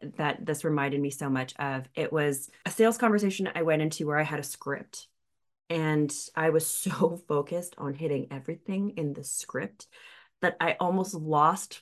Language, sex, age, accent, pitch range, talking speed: English, female, 20-39, American, 145-185 Hz, 180 wpm